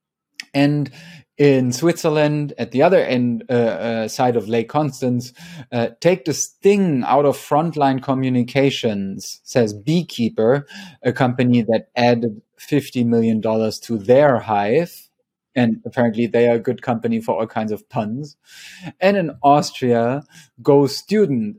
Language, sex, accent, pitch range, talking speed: English, male, German, 115-145 Hz, 140 wpm